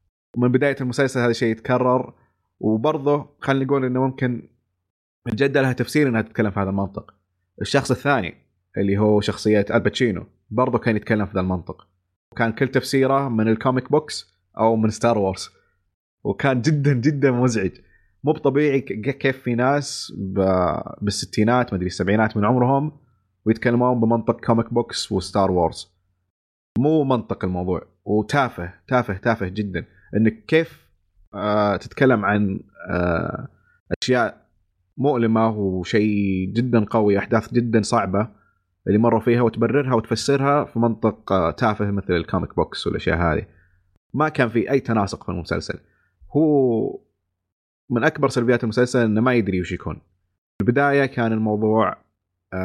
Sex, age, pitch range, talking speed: male, 30-49, 95-125 Hz, 130 wpm